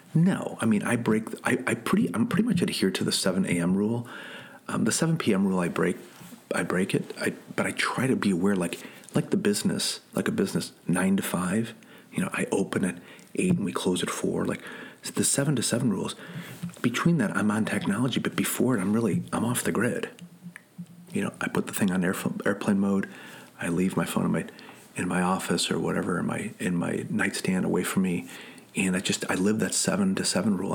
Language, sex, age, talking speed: English, male, 40-59, 225 wpm